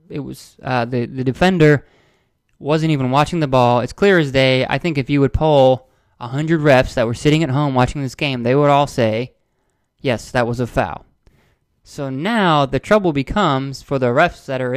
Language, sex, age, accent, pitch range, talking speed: English, male, 20-39, American, 120-145 Hz, 205 wpm